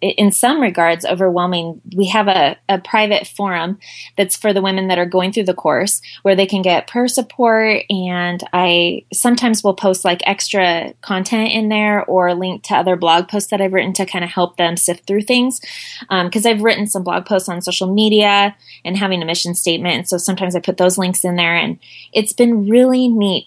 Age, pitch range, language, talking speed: 20-39, 180-220 Hz, English, 210 wpm